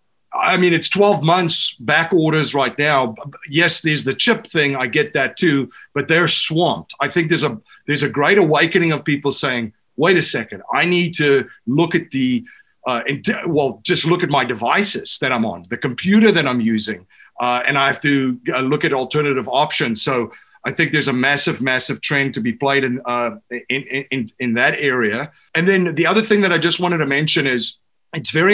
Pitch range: 140-180 Hz